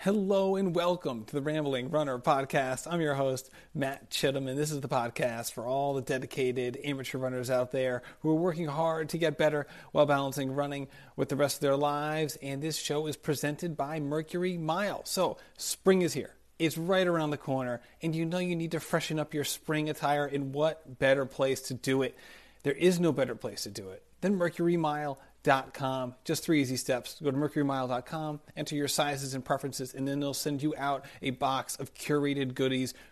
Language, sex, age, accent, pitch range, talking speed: English, male, 40-59, American, 130-155 Hz, 205 wpm